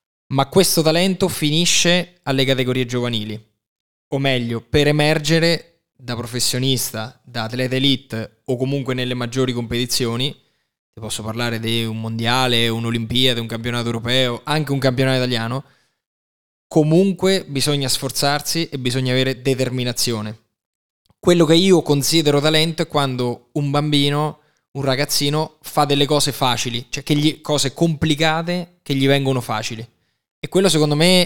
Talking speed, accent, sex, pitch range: 130 wpm, native, male, 120-145 Hz